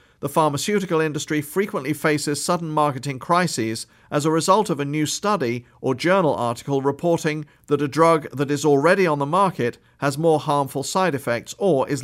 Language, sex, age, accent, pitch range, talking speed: English, male, 50-69, British, 135-160 Hz, 175 wpm